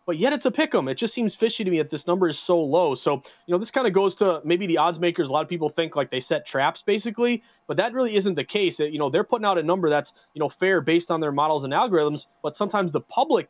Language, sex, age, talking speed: English, male, 30-49, 300 wpm